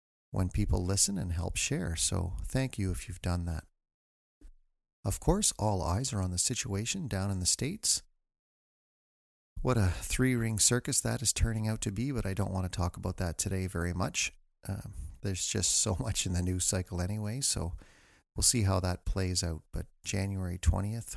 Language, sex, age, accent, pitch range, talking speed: English, male, 40-59, American, 90-105 Hz, 190 wpm